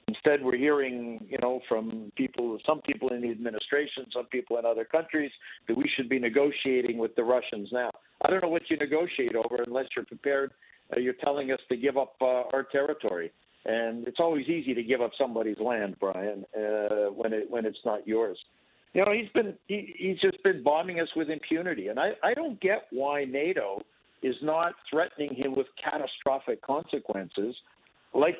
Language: English